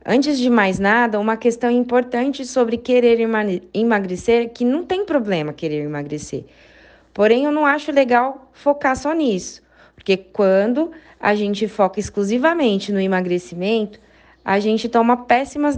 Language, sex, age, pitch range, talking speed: Portuguese, female, 20-39, 200-265 Hz, 135 wpm